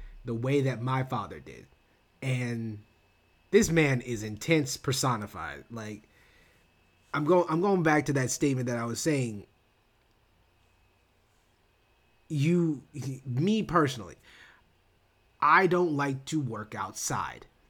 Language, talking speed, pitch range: English, 110 wpm, 105-145 Hz